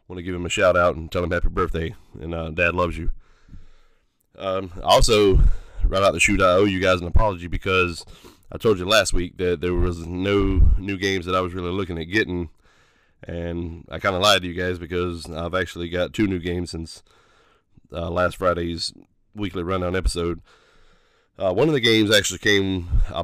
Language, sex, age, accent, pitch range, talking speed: English, male, 20-39, American, 85-95 Hz, 200 wpm